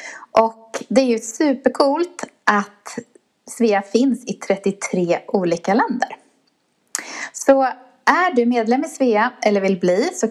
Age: 20-39